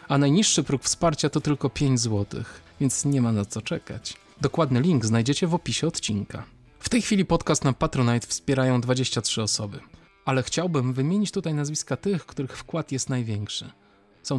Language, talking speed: Polish, 165 wpm